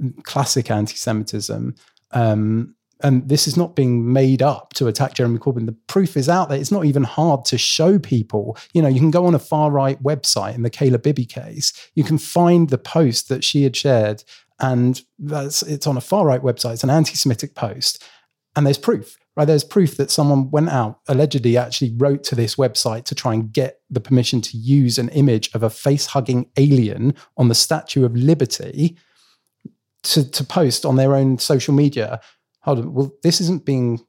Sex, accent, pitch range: male, British, 120-145 Hz